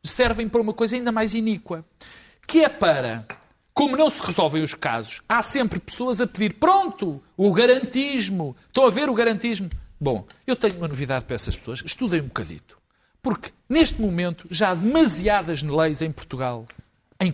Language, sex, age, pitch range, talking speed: Portuguese, male, 50-69, 160-250 Hz, 175 wpm